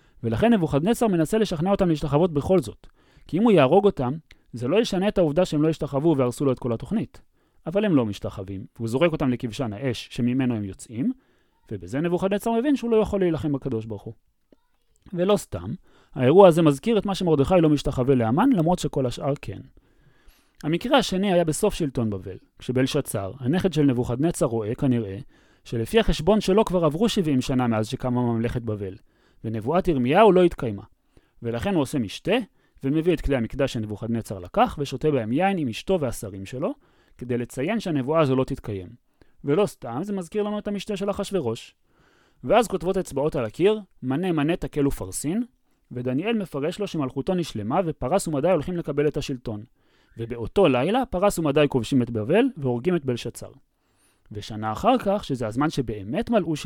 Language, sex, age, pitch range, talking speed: Hebrew, male, 30-49, 120-185 Hz, 145 wpm